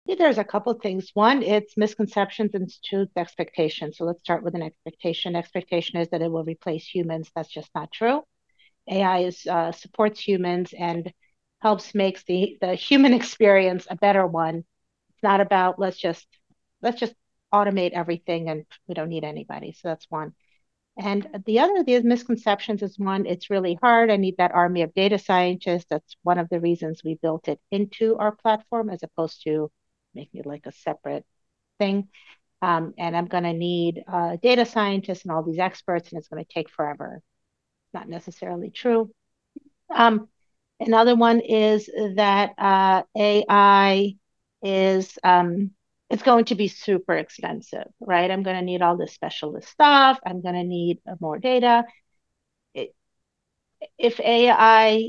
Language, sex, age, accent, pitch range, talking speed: English, female, 50-69, American, 170-215 Hz, 160 wpm